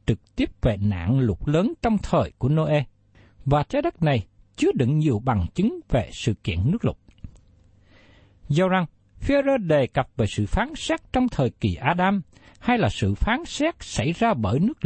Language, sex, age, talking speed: Vietnamese, male, 60-79, 185 wpm